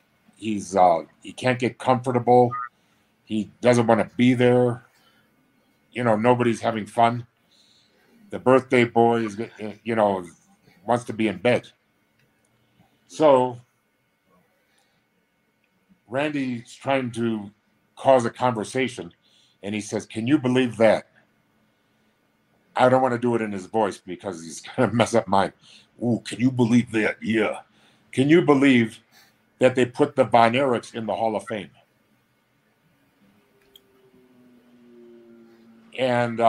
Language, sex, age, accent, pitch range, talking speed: English, male, 50-69, American, 110-130 Hz, 130 wpm